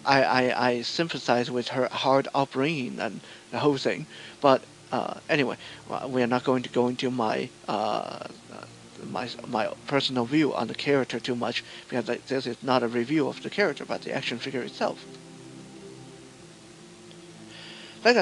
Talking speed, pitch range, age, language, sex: 160 wpm, 125-150 Hz, 50-69, English, male